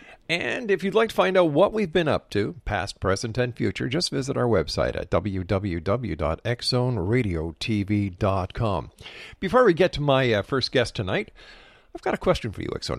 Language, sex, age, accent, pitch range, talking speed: English, male, 50-69, American, 115-160 Hz, 175 wpm